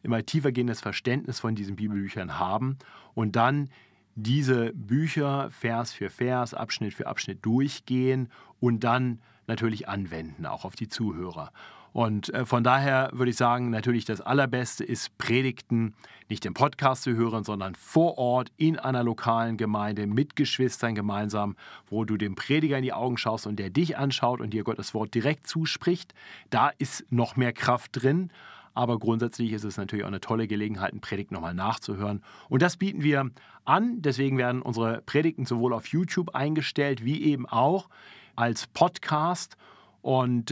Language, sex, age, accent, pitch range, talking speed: German, male, 40-59, German, 115-140 Hz, 160 wpm